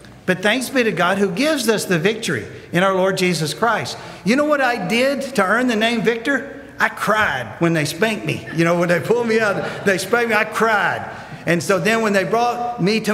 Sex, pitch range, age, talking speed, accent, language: male, 160-230 Hz, 50-69, 235 wpm, American, English